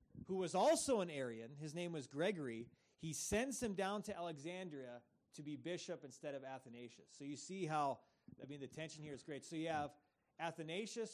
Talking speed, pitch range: 195 wpm, 135-175 Hz